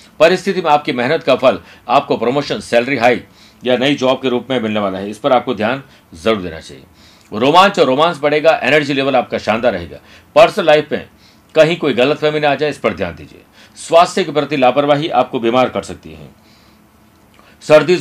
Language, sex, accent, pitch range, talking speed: Hindi, male, native, 110-150 Hz, 115 wpm